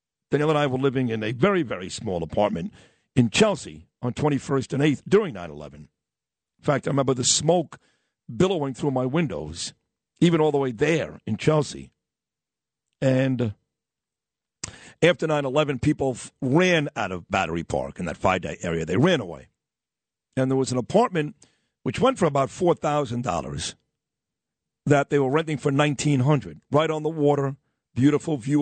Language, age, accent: English, 50-69, American